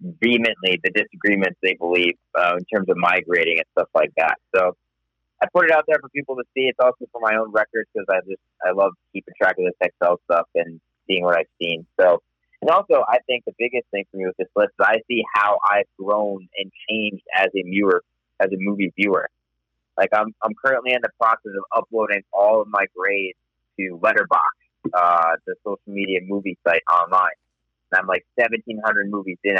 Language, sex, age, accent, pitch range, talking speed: English, male, 30-49, American, 90-115 Hz, 205 wpm